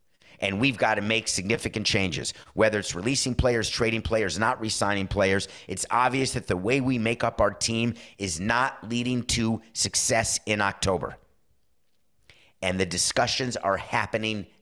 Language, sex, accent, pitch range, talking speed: English, male, American, 95-130 Hz, 155 wpm